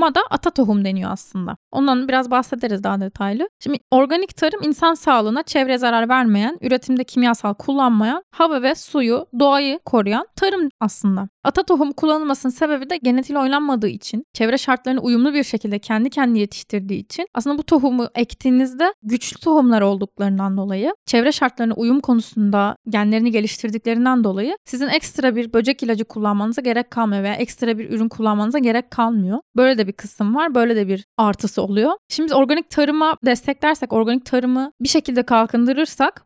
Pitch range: 220-280 Hz